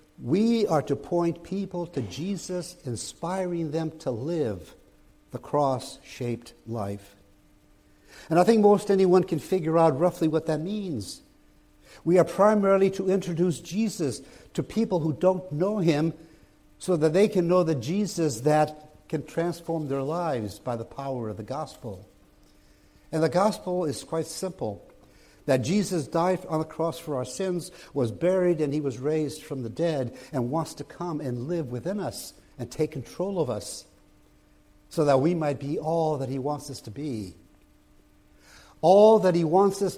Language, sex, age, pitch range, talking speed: English, male, 60-79, 135-180 Hz, 165 wpm